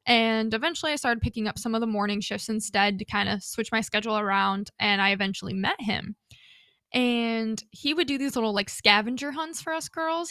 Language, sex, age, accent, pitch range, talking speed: English, female, 20-39, American, 210-250 Hz, 210 wpm